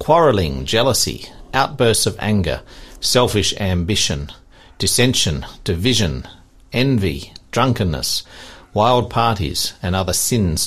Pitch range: 90-120 Hz